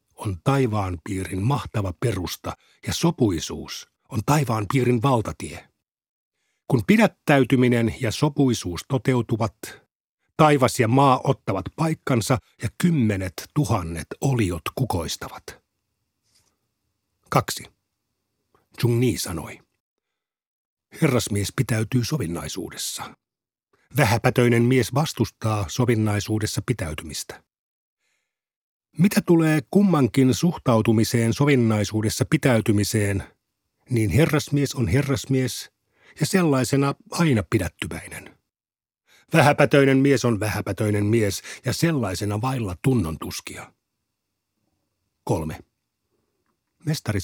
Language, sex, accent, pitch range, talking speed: Finnish, male, native, 105-135 Hz, 80 wpm